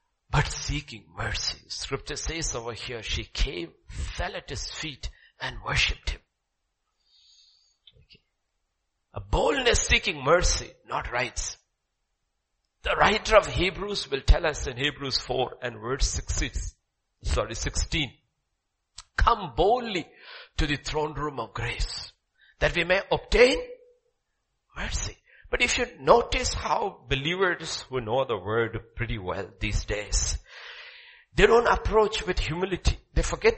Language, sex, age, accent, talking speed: English, male, 60-79, Indian, 125 wpm